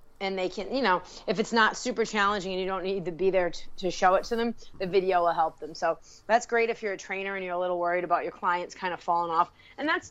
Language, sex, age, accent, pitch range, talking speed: English, female, 30-49, American, 185-235 Hz, 290 wpm